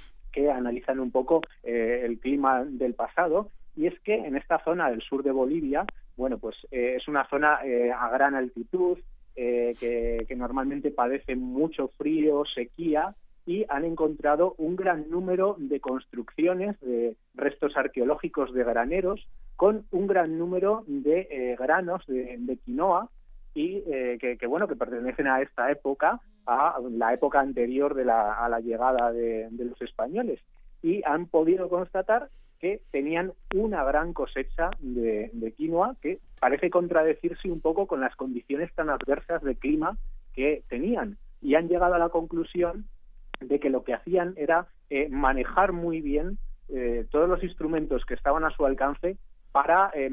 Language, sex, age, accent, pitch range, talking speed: Spanish, male, 30-49, Spanish, 125-175 Hz, 160 wpm